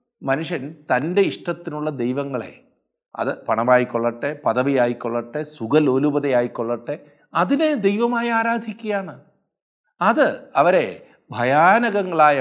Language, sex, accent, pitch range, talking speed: Malayalam, male, native, 130-190 Hz, 75 wpm